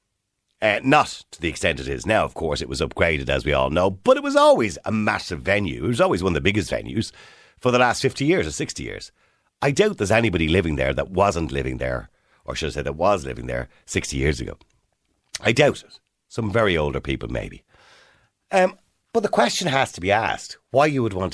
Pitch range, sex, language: 75-120 Hz, male, English